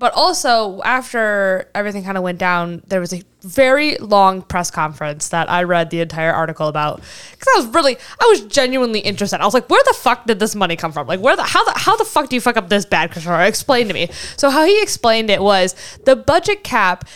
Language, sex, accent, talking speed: English, female, American, 240 wpm